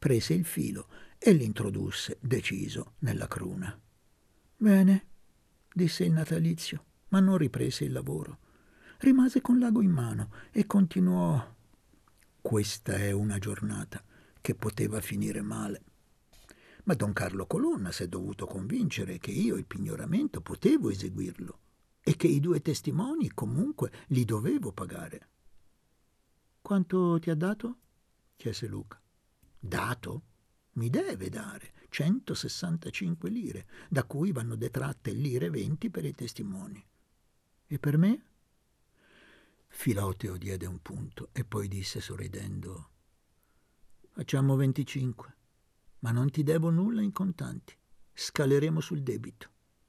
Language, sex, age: Italian, male, 50-69